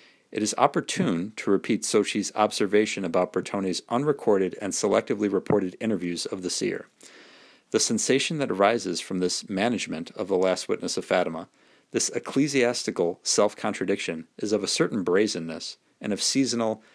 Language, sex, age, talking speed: English, male, 40-59, 145 wpm